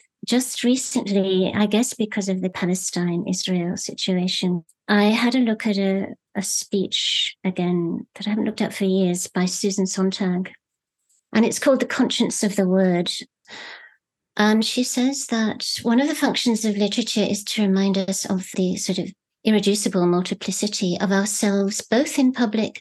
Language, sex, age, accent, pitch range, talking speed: English, female, 50-69, British, 185-225 Hz, 160 wpm